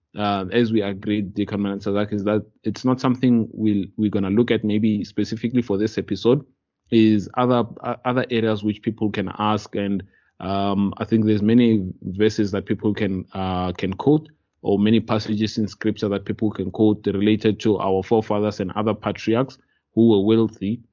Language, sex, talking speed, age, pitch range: English, male, 180 wpm, 20-39, 100-115 Hz